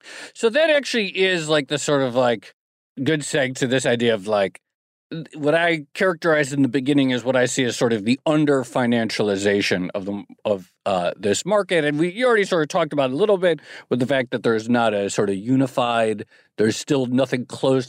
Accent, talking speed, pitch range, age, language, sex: American, 215 wpm, 125-165 Hz, 40-59, English, male